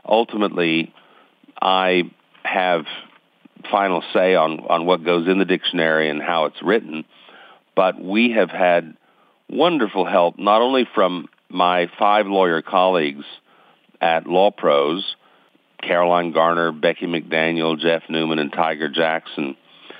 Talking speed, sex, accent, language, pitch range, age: 120 wpm, male, American, English, 80-100 Hz, 50-69